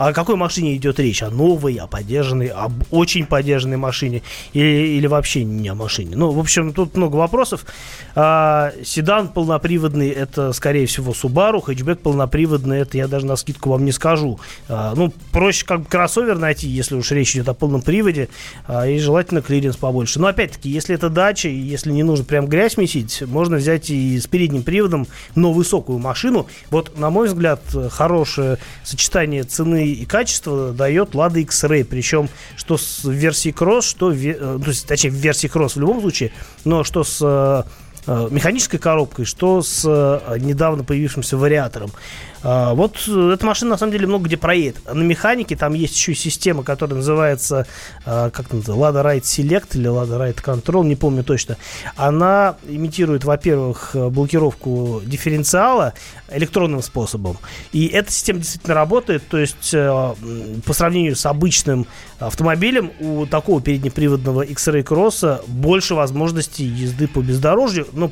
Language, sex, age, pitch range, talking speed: Russian, male, 30-49, 135-165 Hz, 155 wpm